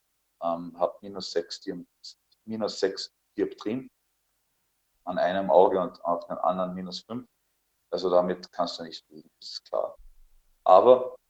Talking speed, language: 125 wpm, German